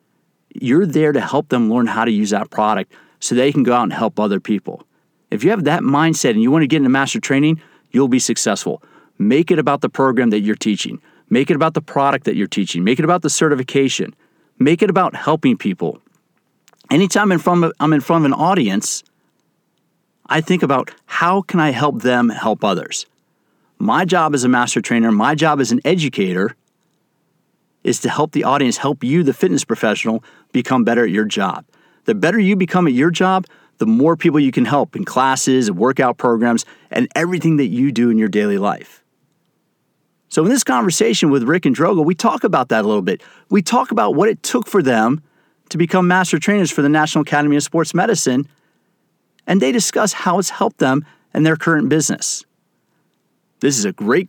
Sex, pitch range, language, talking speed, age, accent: male, 135-180 Hz, English, 200 wpm, 40-59, American